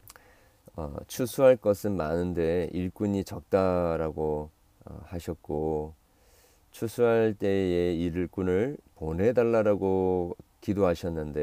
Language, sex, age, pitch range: Korean, male, 40-59, 80-105 Hz